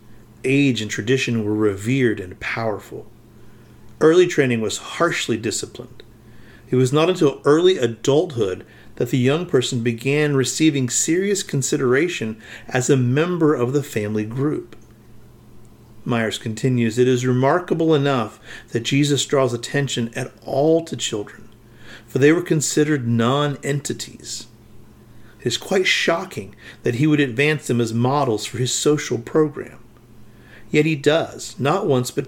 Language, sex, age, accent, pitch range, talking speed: English, male, 40-59, American, 115-145 Hz, 135 wpm